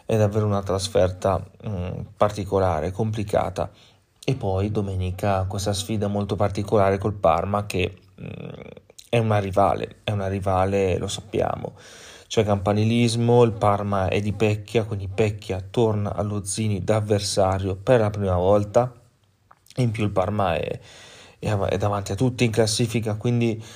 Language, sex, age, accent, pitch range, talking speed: Italian, male, 30-49, native, 100-115 Hz, 135 wpm